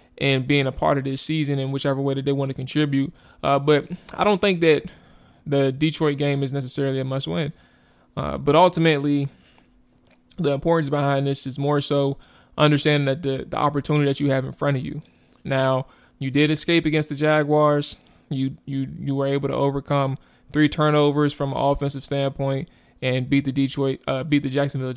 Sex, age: male, 20-39